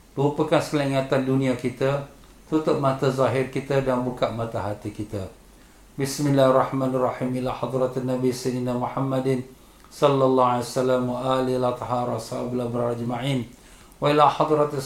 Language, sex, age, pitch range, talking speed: Malay, male, 50-69, 120-135 Hz, 120 wpm